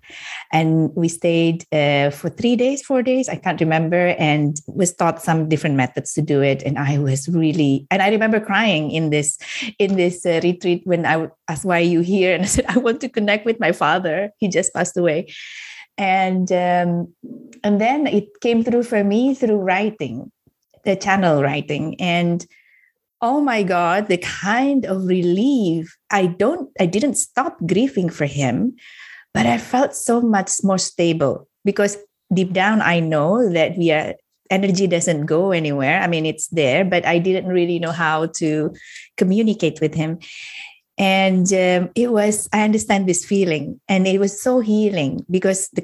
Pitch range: 160-205 Hz